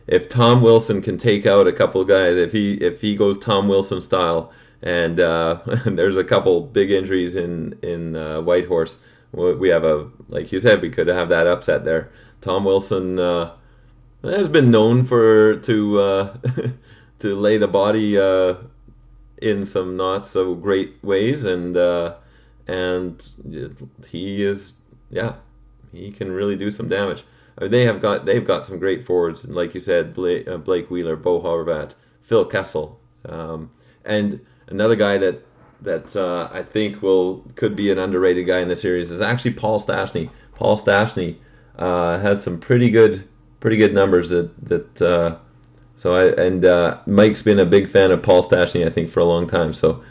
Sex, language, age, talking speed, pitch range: male, English, 30-49, 175 wpm, 90-110 Hz